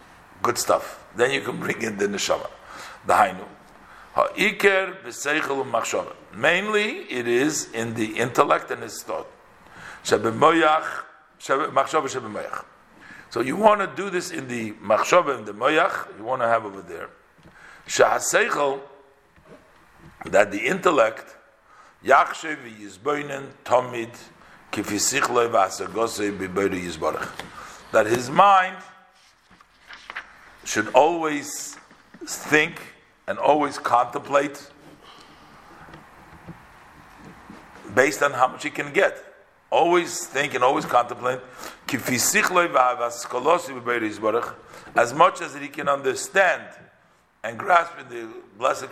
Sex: male